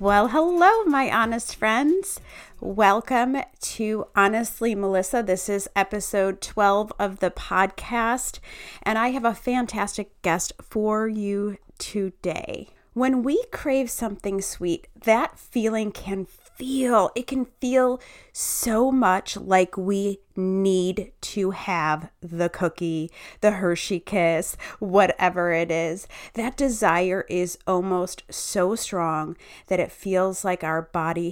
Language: English